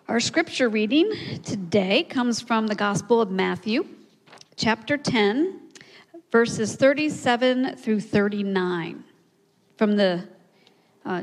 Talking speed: 100 wpm